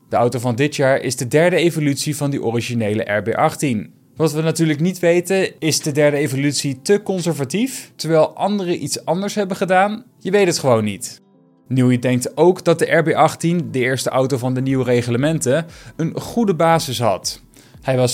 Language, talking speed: Dutch, 180 wpm